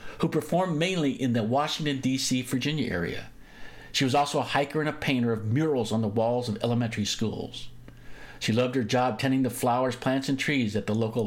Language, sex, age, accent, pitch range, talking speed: English, male, 50-69, American, 110-145 Hz, 200 wpm